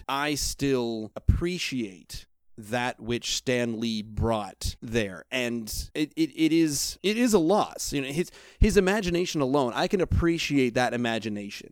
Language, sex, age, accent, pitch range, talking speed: English, male, 30-49, American, 115-150 Hz, 145 wpm